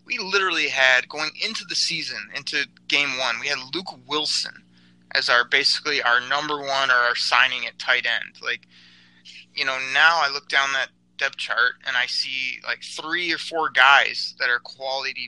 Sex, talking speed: male, 185 wpm